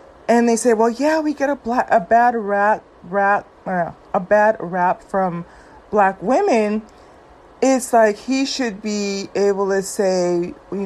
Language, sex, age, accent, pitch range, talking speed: English, female, 30-49, American, 190-235 Hz, 160 wpm